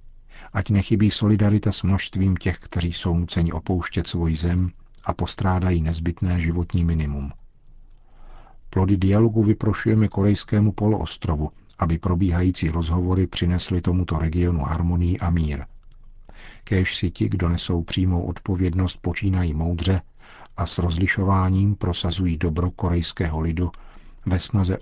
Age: 50-69